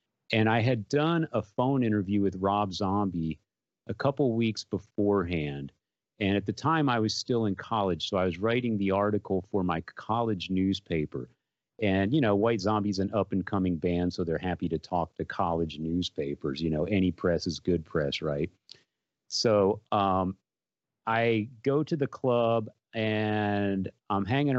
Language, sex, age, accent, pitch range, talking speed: English, male, 40-59, American, 95-115 Hz, 165 wpm